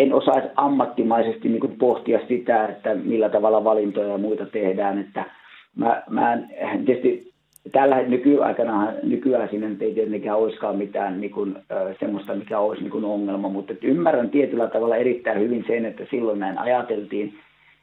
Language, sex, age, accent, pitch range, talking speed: Finnish, male, 50-69, native, 105-145 Hz, 140 wpm